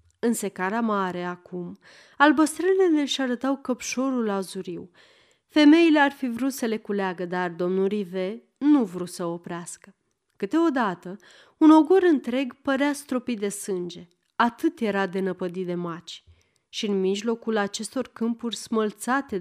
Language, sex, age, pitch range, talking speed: Romanian, female, 30-49, 190-255 Hz, 135 wpm